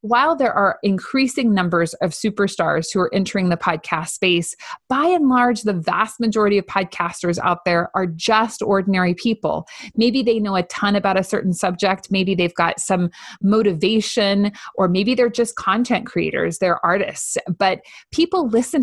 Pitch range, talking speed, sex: 180-235 Hz, 165 wpm, female